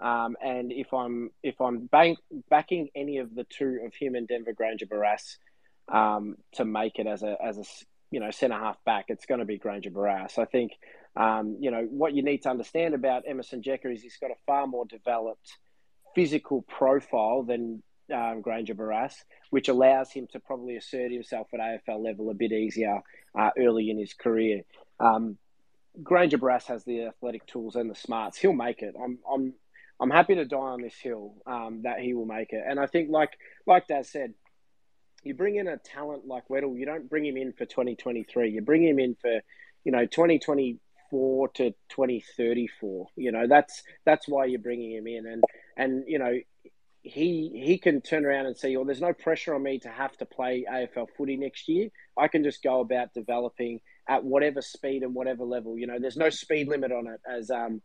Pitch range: 115-140 Hz